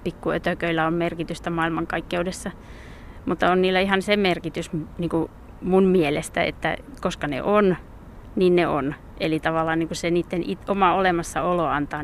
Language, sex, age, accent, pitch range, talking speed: Finnish, female, 30-49, native, 165-185 Hz, 145 wpm